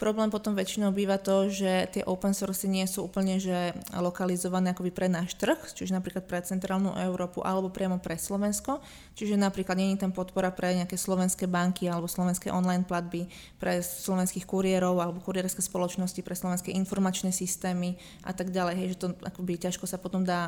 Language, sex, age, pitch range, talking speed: Slovak, female, 20-39, 185-200 Hz, 175 wpm